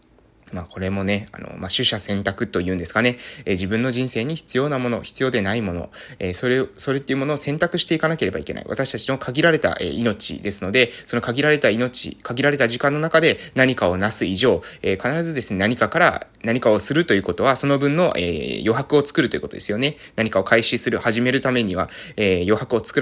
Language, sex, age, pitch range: Japanese, male, 20-39, 105-150 Hz